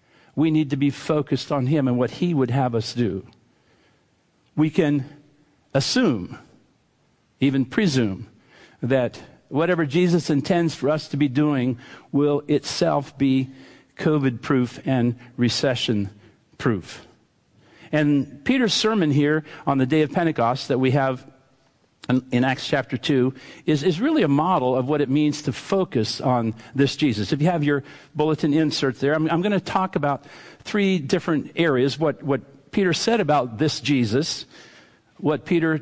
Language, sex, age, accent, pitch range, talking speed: English, male, 50-69, American, 130-155 Hz, 150 wpm